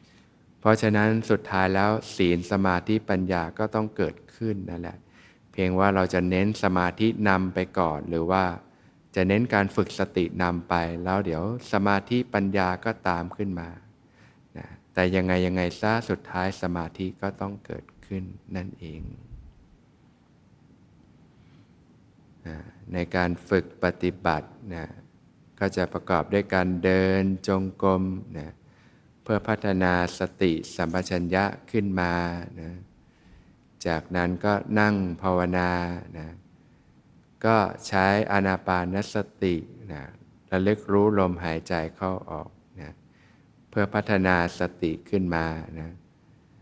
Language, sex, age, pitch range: Thai, male, 20-39, 90-105 Hz